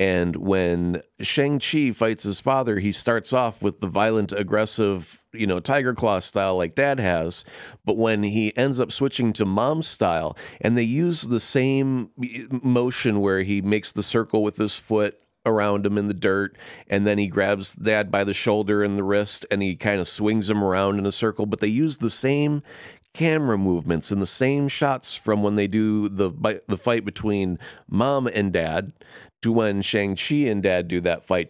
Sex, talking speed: male, 190 wpm